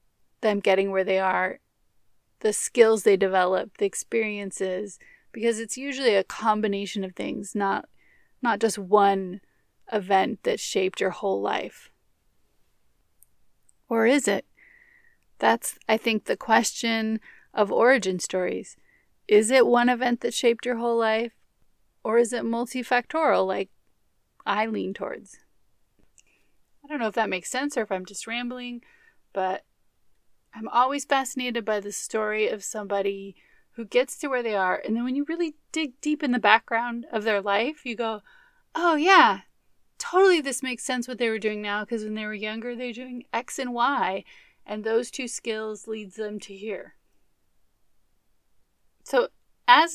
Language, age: English, 30-49